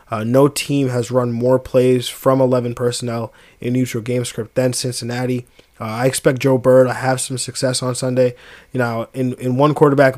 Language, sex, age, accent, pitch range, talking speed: English, male, 20-39, American, 120-130 Hz, 195 wpm